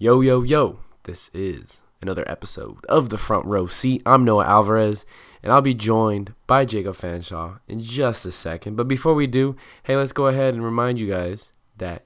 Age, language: 20-39, English